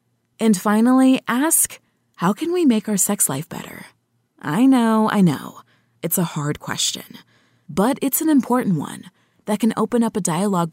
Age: 20-39